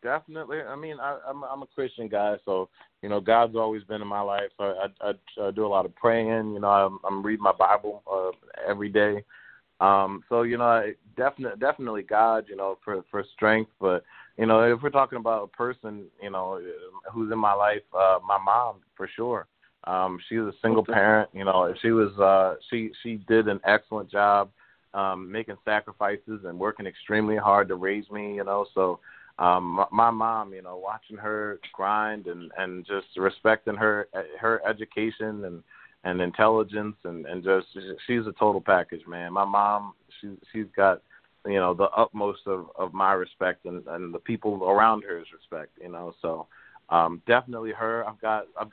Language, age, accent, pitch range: English, 20-39, American, 95-110 Hz